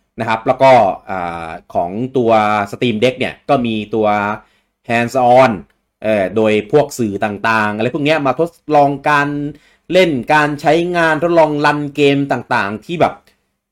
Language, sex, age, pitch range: English, male, 30-49, 100-140 Hz